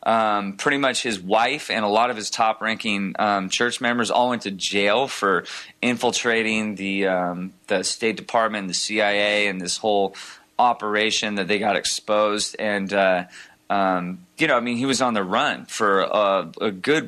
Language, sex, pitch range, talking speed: English, male, 100-115 Hz, 185 wpm